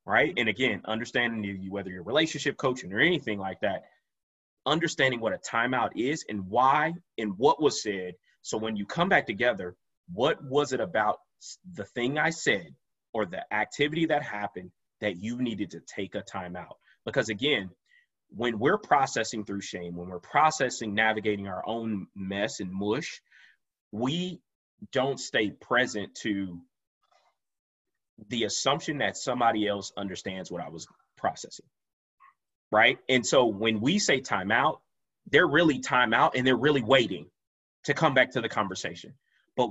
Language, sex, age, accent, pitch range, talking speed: English, male, 30-49, American, 100-130 Hz, 155 wpm